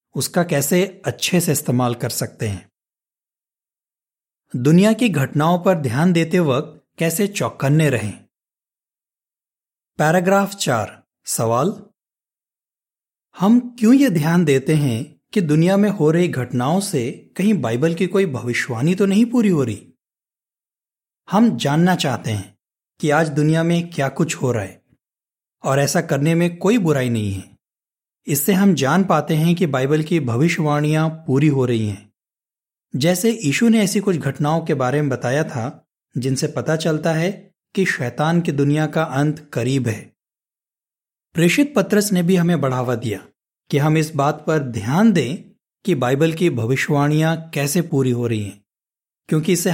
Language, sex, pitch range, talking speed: Hindi, male, 130-180 Hz, 150 wpm